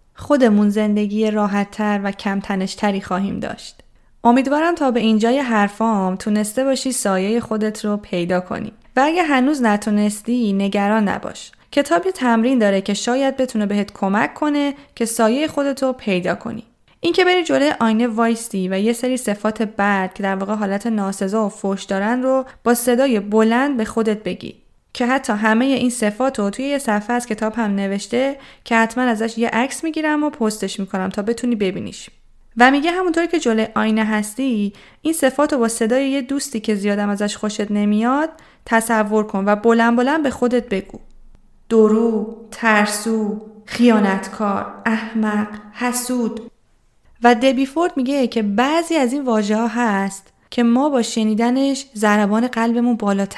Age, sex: 20-39, female